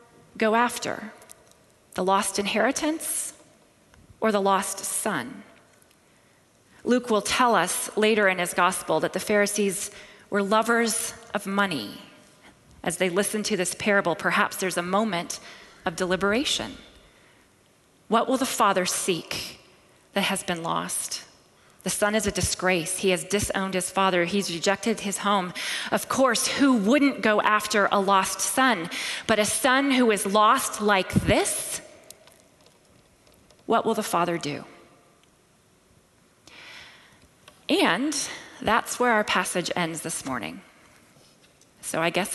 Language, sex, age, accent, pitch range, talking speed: English, female, 30-49, American, 190-230 Hz, 130 wpm